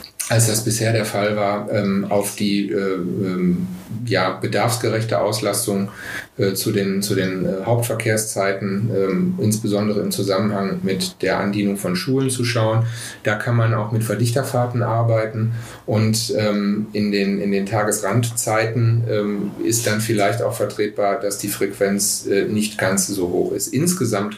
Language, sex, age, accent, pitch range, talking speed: German, male, 40-59, German, 105-120 Hz, 150 wpm